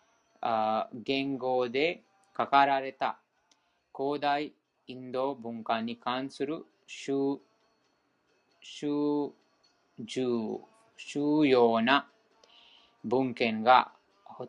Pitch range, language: 120-160 Hz, Japanese